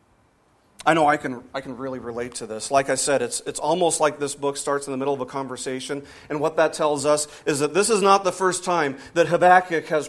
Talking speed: 250 wpm